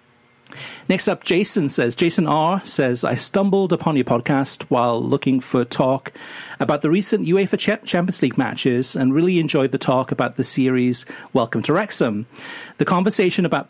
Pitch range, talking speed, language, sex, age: 130-160 Hz, 160 wpm, English, male, 40-59